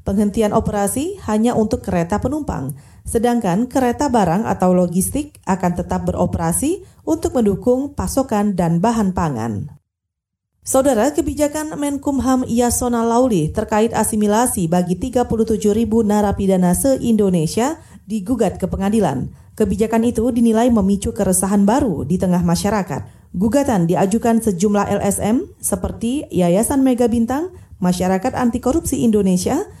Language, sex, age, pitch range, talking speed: Indonesian, female, 30-49, 195-250 Hz, 110 wpm